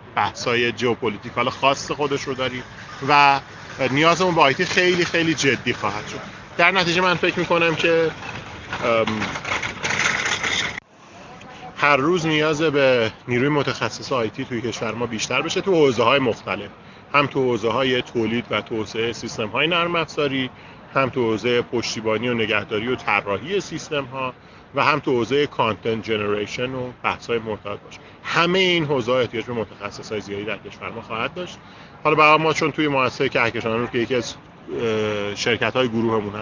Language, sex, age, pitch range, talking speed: Persian, male, 40-59, 115-150 Hz, 155 wpm